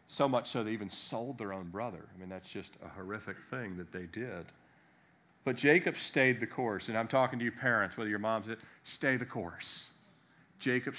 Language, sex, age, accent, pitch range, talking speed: English, male, 40-59, American, 110-150 Hz, 215 wpm